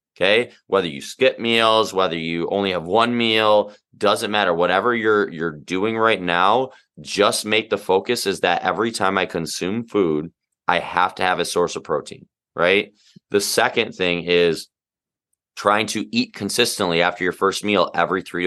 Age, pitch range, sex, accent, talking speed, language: 20-39, 90-105 Hz, male, American, 170 wpm, English